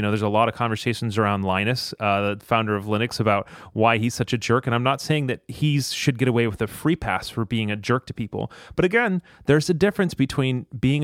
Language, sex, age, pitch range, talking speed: English, male, 30-49, 110-140 Hz, 250 wpm